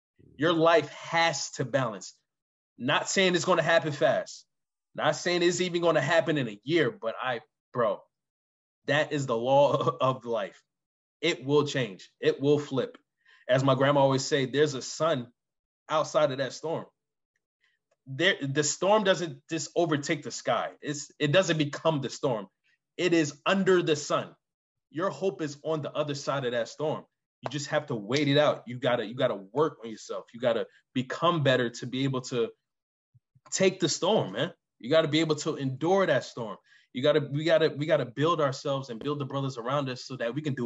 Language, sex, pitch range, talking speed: English, male, 130-165 Hz, 195 wpm